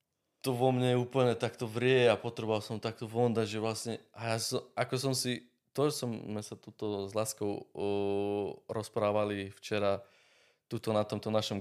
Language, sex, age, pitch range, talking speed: Slovak, male, 20-39, 100-115 Hz, 165 wpm